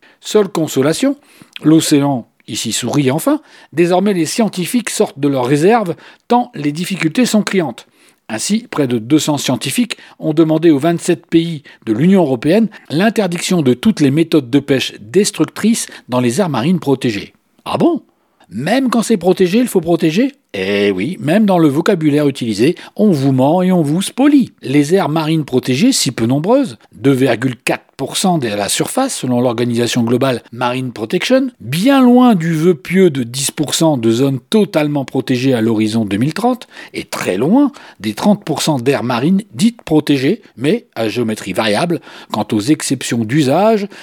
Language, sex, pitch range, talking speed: French, male, 135-200 Hz, 155 wpm